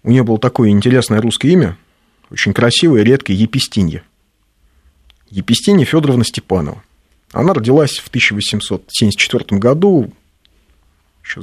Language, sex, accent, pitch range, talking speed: Russian, male, native, 80-125 Hz, 110 wpm